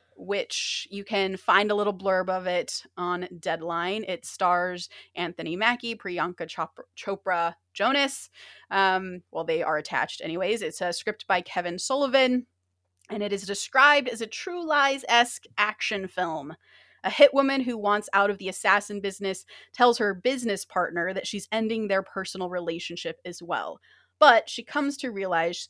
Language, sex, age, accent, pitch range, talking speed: English, female, 30-49, American, 180-230 Hz, 160 wpm